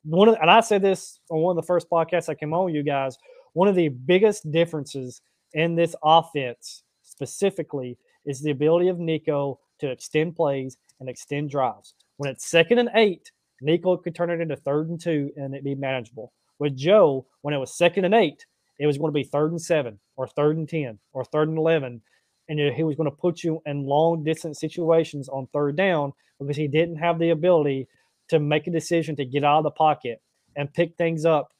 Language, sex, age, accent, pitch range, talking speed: English, male, 20-39, American, 140-165 Hz, 215 wpm